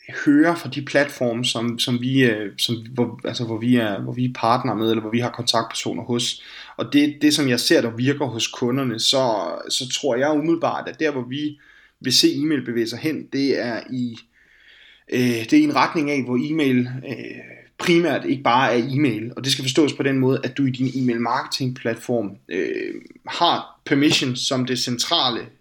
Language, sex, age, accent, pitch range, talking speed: Danish, male, 20-39, native, 120-145 Hz, 200 wpm